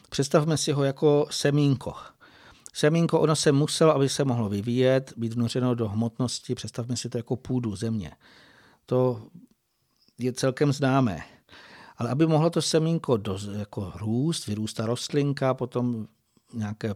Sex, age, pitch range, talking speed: male, 60-79, 120-135 Hz, 140 wpm